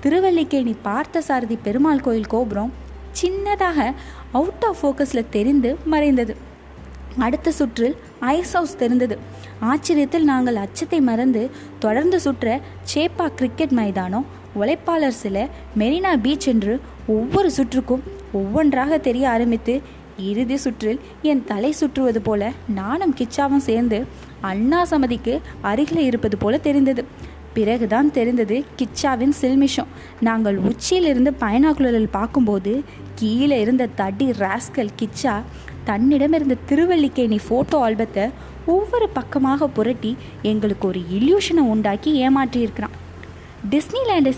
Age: 20-39